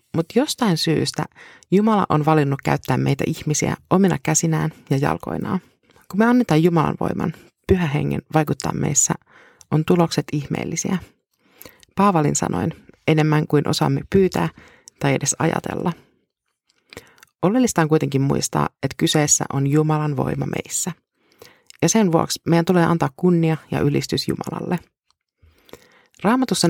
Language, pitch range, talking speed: Finnish, 150-185 Hz, 125 wpm